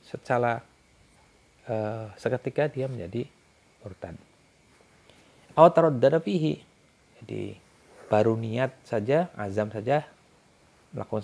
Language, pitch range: Indonesian, 105-145 Hz